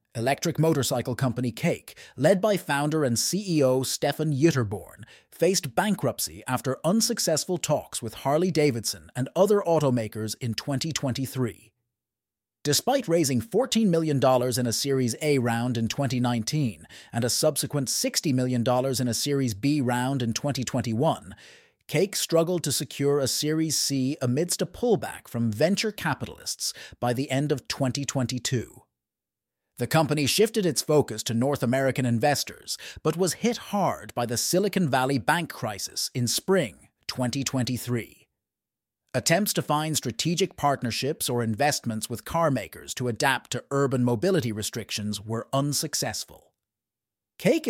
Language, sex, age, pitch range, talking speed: English, male, 30-49, 120-160 Hz, 130 wpm